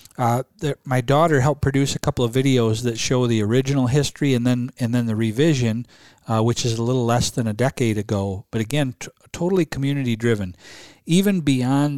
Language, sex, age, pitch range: English, male, 40-59, 110-140 Hz